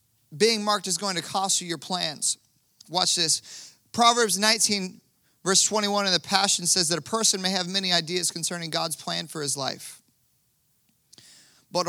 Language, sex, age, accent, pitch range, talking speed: English, male, 30-49, American, 165-225 Hz, 165 wpm